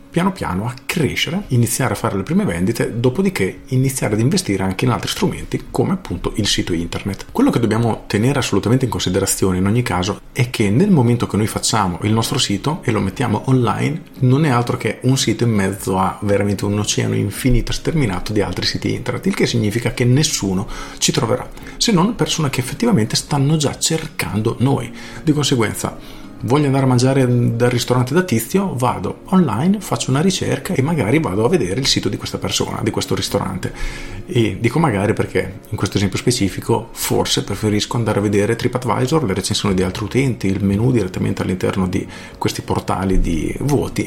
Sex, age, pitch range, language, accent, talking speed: male, 40-59, 95-130 Hz, Italian, native, 185 wpm